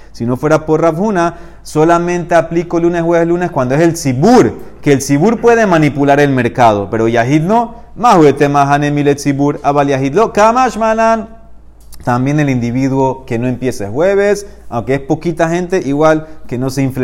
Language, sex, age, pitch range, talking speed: Spanish, male, 30-49, 125-170 Hz, 150 wpm